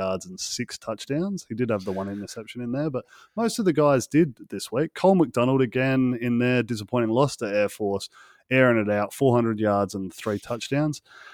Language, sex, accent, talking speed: English, male, Australian, 205 wpm